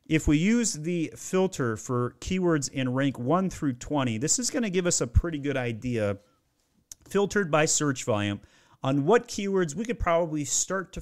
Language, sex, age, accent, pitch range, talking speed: English, male, 40-59, American, 120-165 Hz, 185 wpm